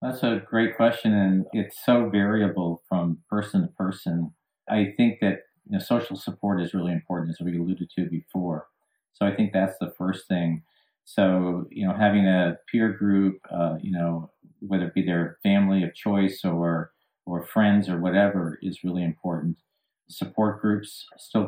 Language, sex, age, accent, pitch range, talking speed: English, male, 50-69, American, 85-100 Hz, 170 wpm